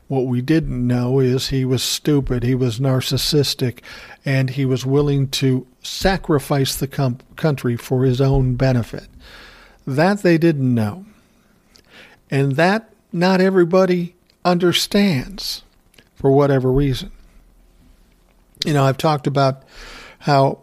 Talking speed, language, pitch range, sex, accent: 120 wpm, English, 130-150 Hz, male, American